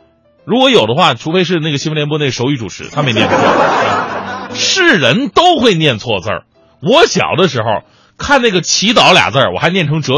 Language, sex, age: Chinese, male, 30-49